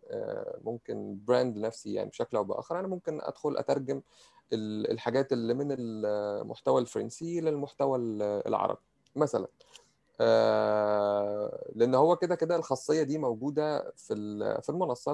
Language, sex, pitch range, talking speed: Arabic, male, 110-160 Hz, 115 wpm